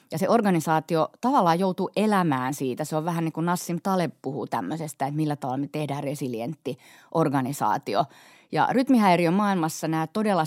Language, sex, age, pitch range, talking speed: Finnish, female, 30-49, 140-180 Hz, 160 wpm